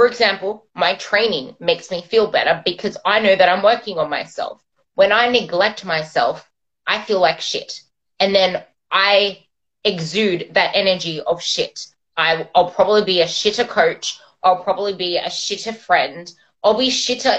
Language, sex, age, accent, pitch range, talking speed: English, female, 20-39, Australian, 180-240 Hz, 160 wpm